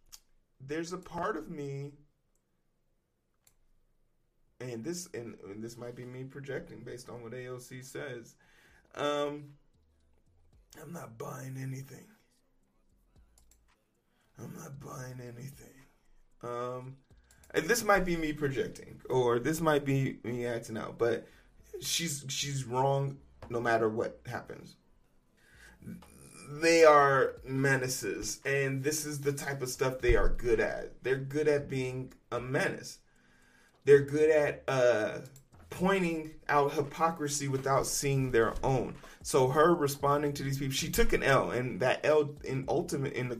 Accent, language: American, English